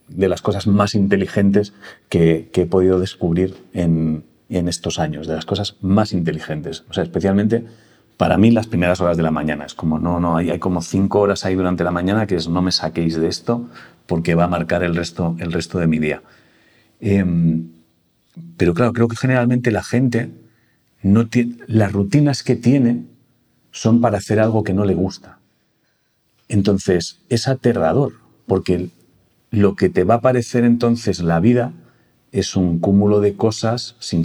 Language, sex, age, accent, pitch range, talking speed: Spanish, male, 40-59, Spanish, 85-115 Hz, 175 wpm